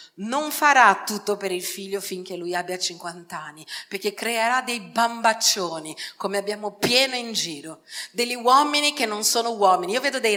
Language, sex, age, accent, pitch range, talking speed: Italian, female, 40-59, native, 200-280 Hz, 170 wpm